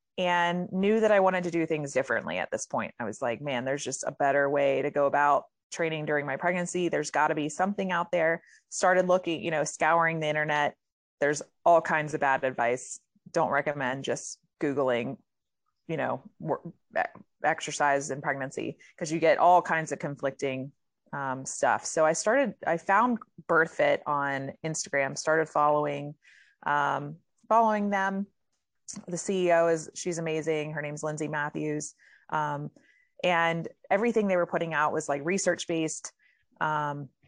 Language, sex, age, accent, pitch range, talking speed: English, female, 30-49, American, 145-175 Hz, 165 wpm